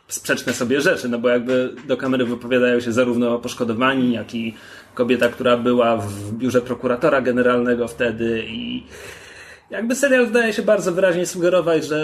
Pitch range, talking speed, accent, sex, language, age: 125-180 Hz, 160 wpm, native, male, Polish, 30-49